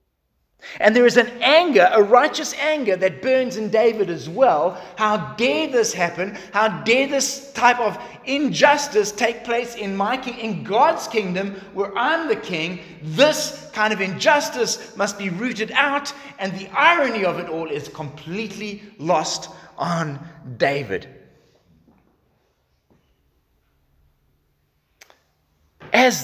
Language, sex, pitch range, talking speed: English, male, 150-235 Hz, 130 wpm